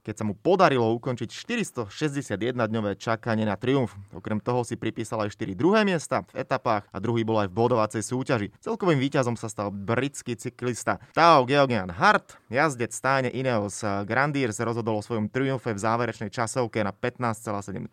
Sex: male